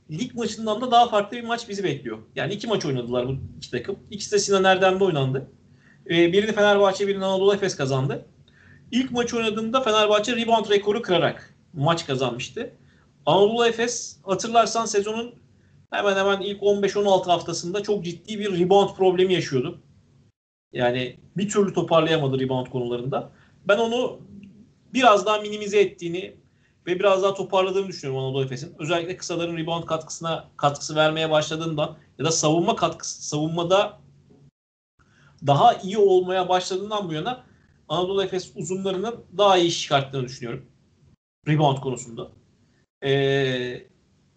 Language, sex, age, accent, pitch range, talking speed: Turkish, male, 40-59, native, 155-205 Hz, 135 wpm